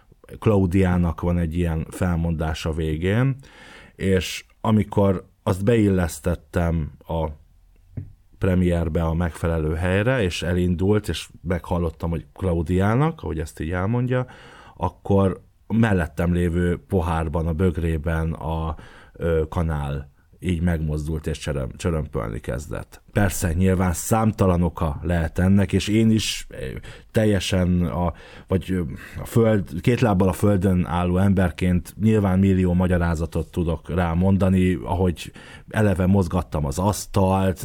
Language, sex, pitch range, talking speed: Hungarian, male, 85-100 Hz, 105 wpm